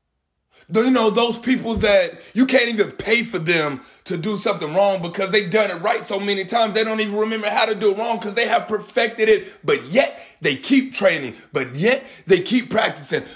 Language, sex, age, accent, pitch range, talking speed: English, male, 30-49, American, 155-220 Hz, 210 wpm